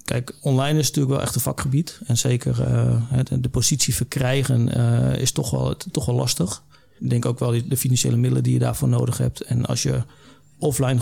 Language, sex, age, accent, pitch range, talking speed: Dutch, male, 40-59, Dutch, 120-130 Hz, 210 wpm